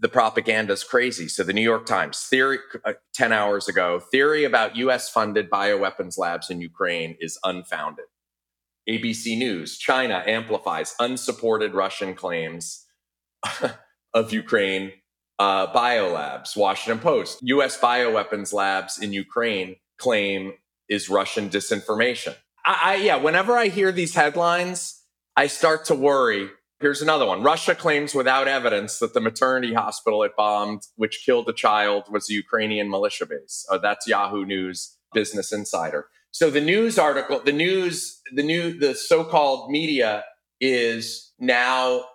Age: 30-49